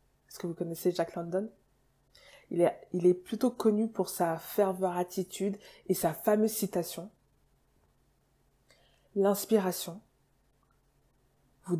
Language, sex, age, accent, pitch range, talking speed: English, female, 20-39, French, 165-200 Hz, 100 wpm